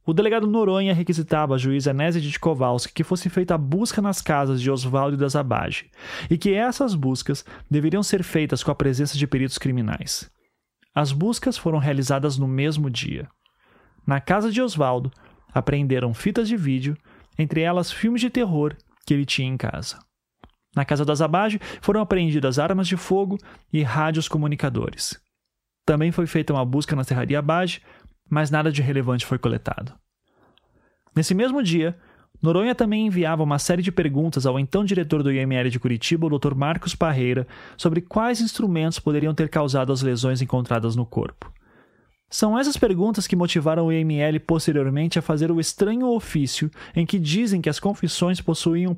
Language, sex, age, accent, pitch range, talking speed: Portuguese, male, 30-49, Brazilian, 140-185 Hz, 165 wpm